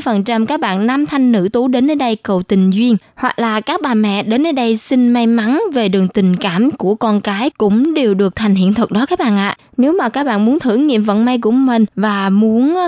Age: 20-39